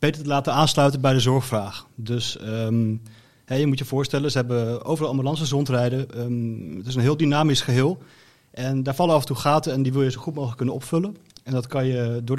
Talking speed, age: 215 wpm, 30-49